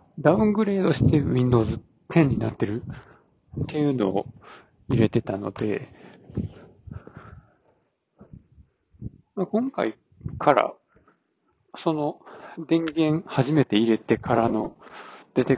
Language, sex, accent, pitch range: Japanese, male, native, 110-150 Hz